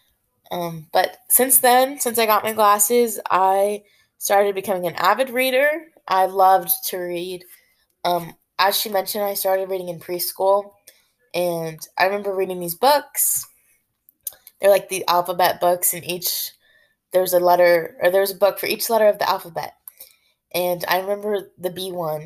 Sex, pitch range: female, 170-200 Hz